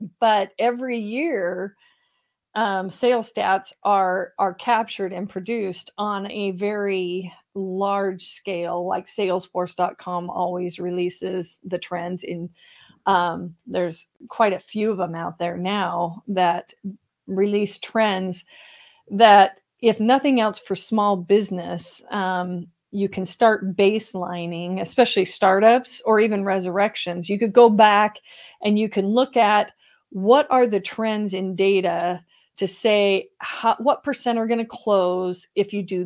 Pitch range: 185-225 Hz